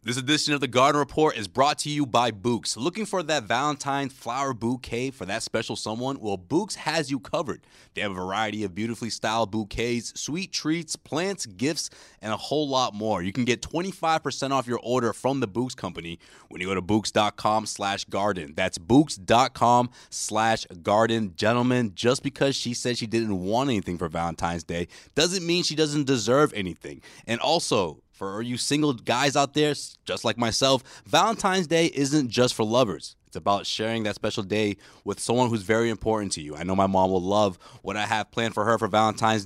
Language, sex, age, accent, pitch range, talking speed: English, male, 30-49, American, 105-140 Hz, 195 wpm